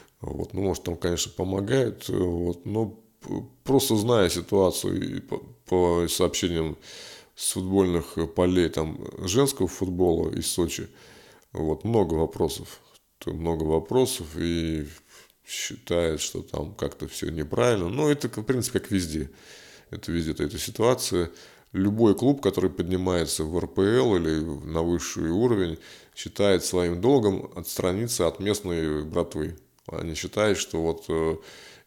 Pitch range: 80-100 Hz